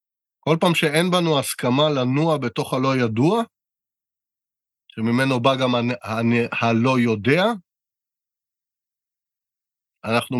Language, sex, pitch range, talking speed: Hebrew, male, 110-145 Hz, 105 wpm